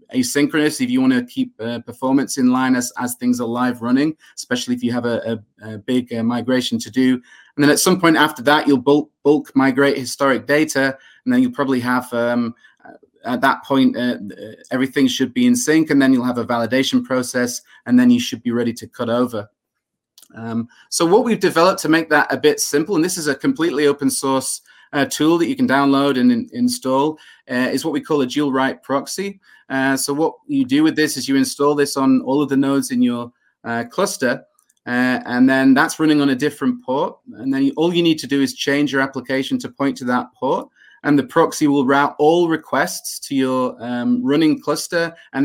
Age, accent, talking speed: 20-39, British, 220 wpm